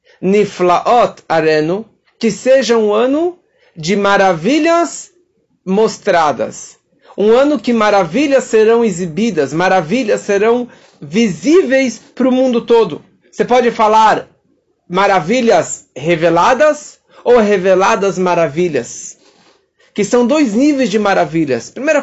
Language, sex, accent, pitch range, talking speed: Portuguese, male, Brazilian, 190-255 Hz, 100 wpm